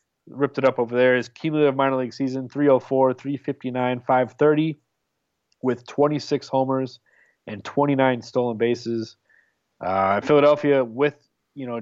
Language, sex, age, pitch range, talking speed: English, male, 20-39, 120-135 Hz, 125 wpm